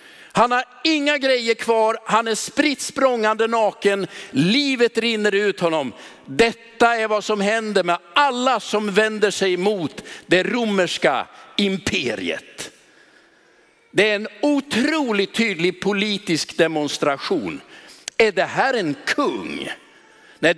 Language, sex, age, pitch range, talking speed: Swedish, male, 60-79, 180-235 Hz, 115 wpm